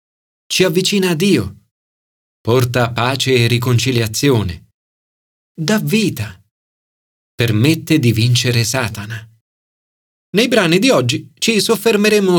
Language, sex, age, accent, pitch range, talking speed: Italian, male, 40-59, native, 100-160 Hz, 95 wpm